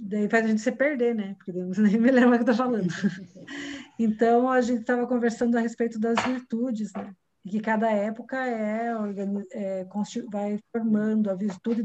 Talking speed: 185 wpm